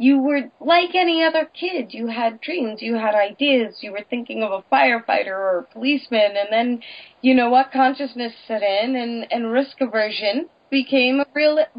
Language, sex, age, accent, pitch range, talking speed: English, female, 30-49, American, 195-265 Hz, 185 wpm